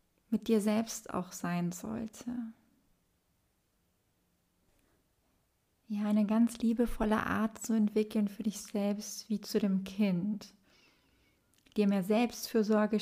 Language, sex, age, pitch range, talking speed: German, female, 30-49, 200-230 Hz, 105 wpm